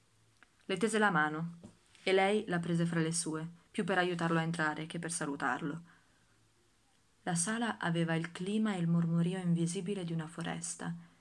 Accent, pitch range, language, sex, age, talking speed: native, 160-185 Hz, Italian, female, 20-39, 165 wpm